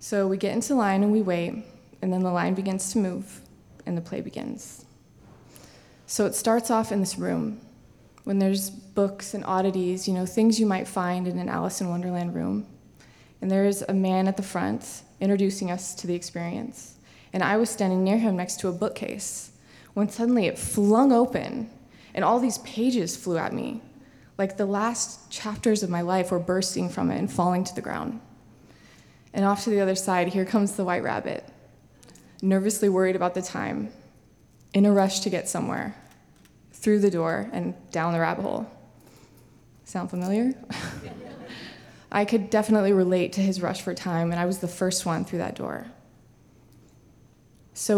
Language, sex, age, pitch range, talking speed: English, female, 20-39, 180-210 Hz, 180 wpm